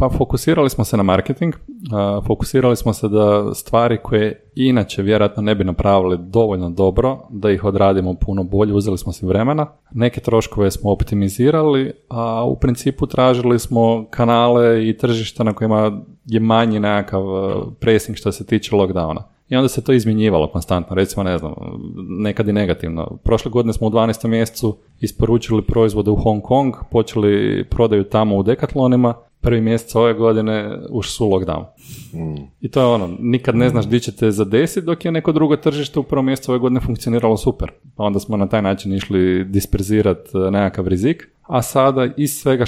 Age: 30-49